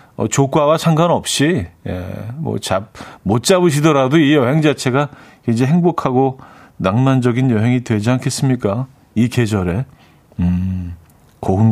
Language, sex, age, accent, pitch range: Korean, male, 40-59, native, 105-150 Hz